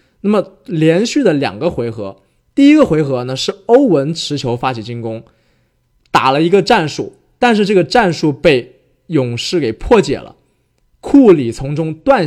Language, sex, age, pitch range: Chinese, male, 20-39, 120-175 Hz